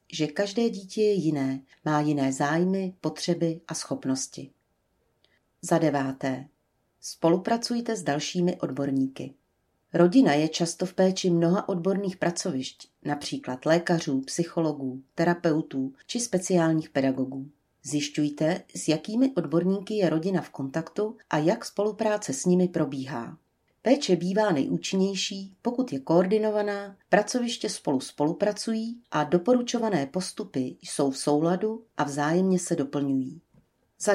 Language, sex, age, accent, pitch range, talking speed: Czech, female, 40-59, native, 140-190 Hz, 115 wpm